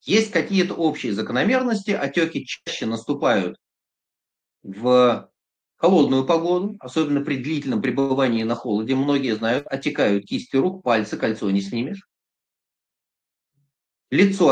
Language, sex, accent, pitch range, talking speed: Russian, male, native, 115-170 Hz, 110 wpm